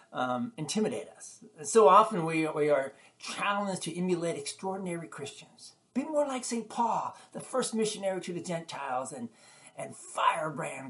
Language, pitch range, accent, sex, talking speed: English, 150-215 Hz, American, male, 150 wpm